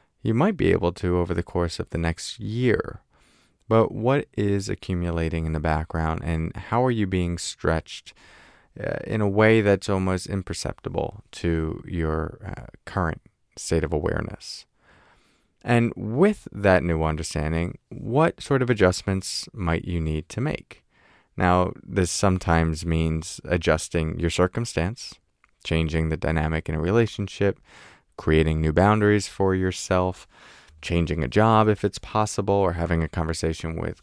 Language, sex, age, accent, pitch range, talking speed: English, male, 20-39, American, 85-105 Hz, 140 wpm